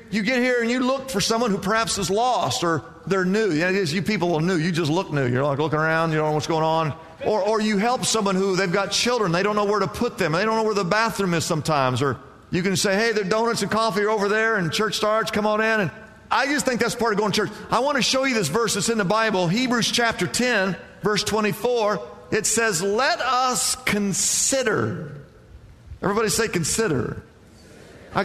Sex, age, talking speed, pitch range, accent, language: male, 50-69, 240 wpm, 185-235 Hz, American, English